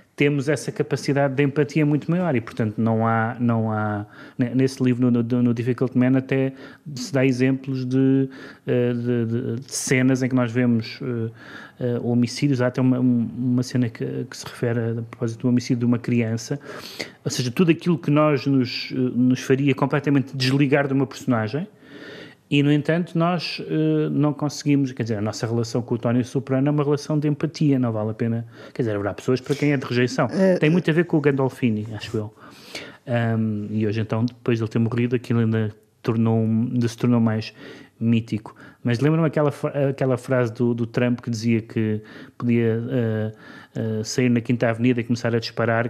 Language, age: Portuguese, 30-49